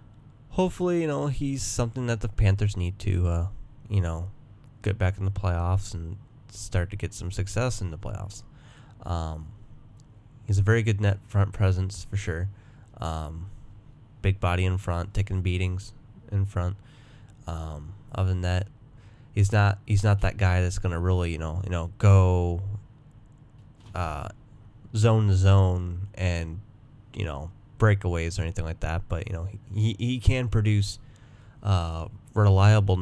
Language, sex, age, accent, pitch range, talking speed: English, male, 20-39, American, 95-115 Hz, 155 wpm